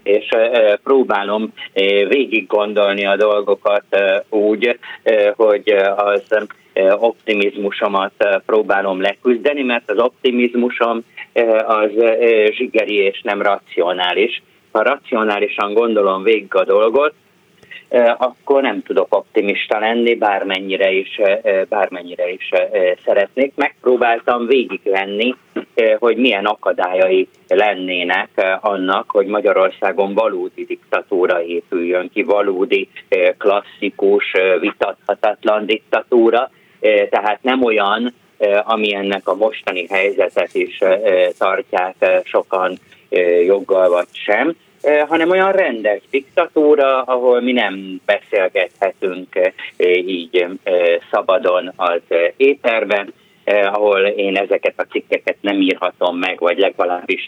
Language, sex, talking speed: Hungarian, male, 95 wpm